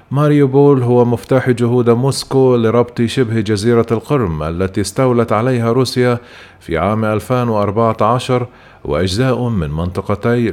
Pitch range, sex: 105-125 Hz, male